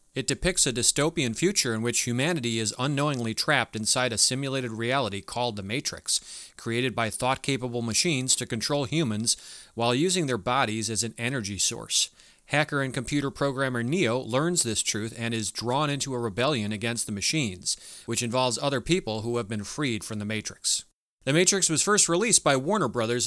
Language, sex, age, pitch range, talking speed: English, male, 30-49, 115-145 Hz, 180 wpm